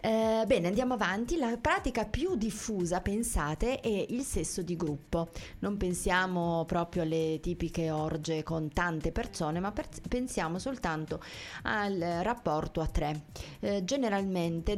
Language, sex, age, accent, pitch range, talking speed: Italian, female, 30-49, native, 160-200 Hz, 130 wpm